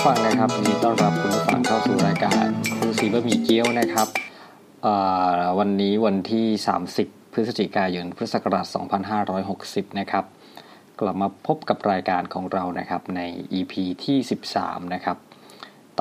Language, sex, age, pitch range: Thai, male, 20-39, 95-110 Hz